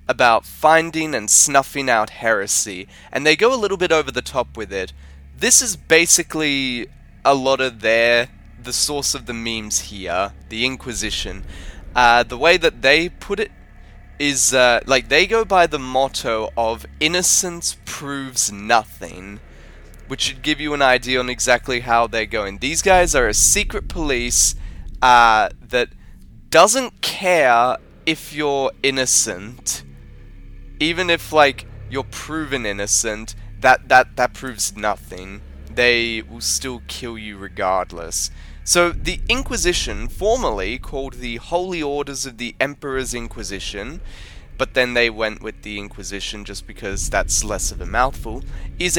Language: English